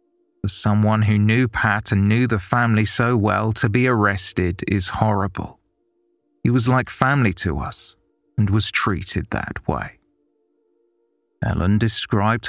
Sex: male